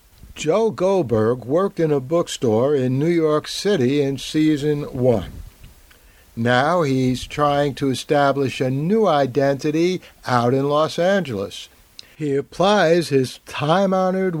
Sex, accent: male, American